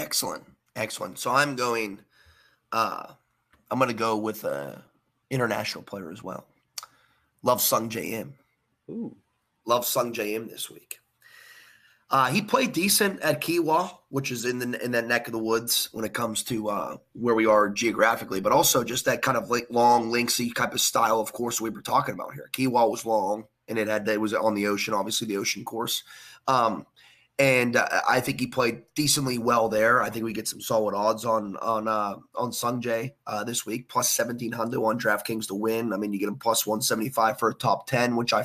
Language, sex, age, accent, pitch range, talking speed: English, male, 30-49, American, 110-130 Hz, 200 wpm